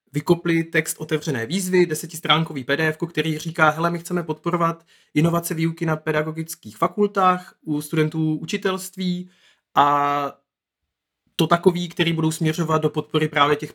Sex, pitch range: male, 140-165 Hz